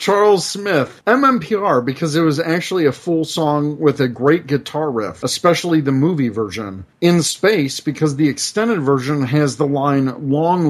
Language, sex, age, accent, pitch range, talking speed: English, male, 40-59, American, 130-160 Hz, 165 wpm